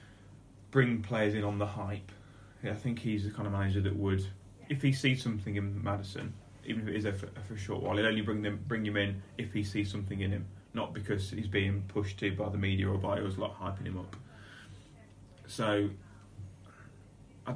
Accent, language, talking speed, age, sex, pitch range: British, English, 215 wpm, 30-49, male, 100-120 Hz